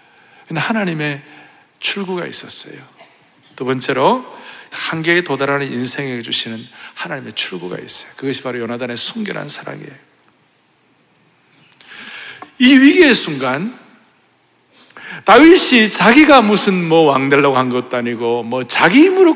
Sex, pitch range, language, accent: male, 130-215 Hz, Korean, native